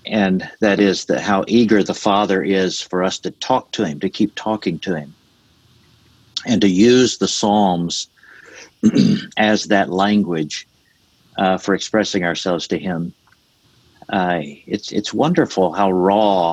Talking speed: 145 wpm